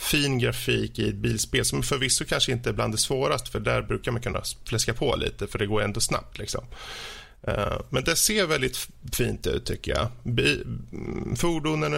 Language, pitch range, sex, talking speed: Swedish, 105-130 Hz, male, 180 wpm